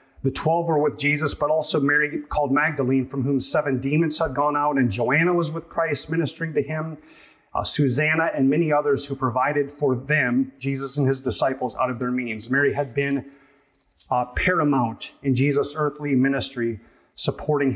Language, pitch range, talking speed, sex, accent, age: English, 135-160 Hz, 175 wpm, male, American, 30-49